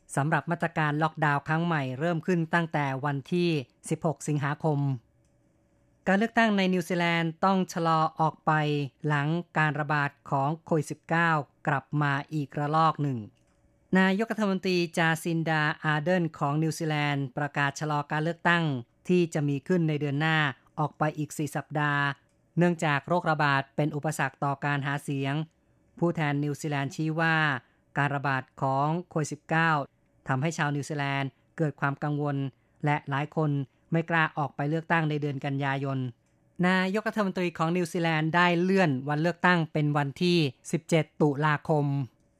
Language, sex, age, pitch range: Thai, female, 20-39, 145-170 Hz